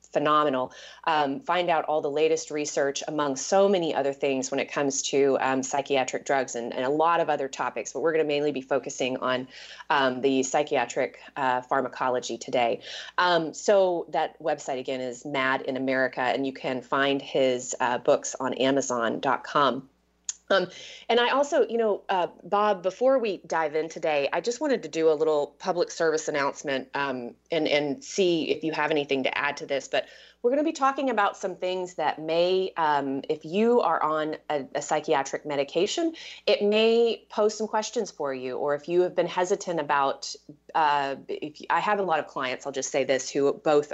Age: 30-49